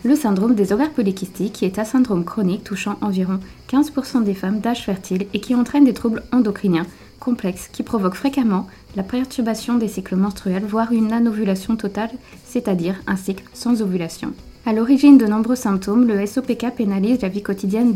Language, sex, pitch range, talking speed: French, female, 200-245 Hz, 170 wpm